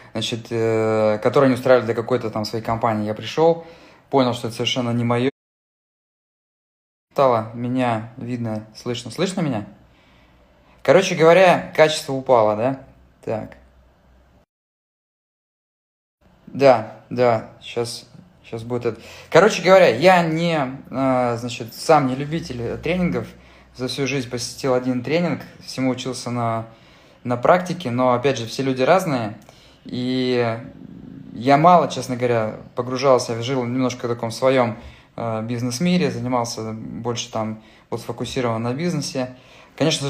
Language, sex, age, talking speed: Russian, male, 20-39, 125 wpm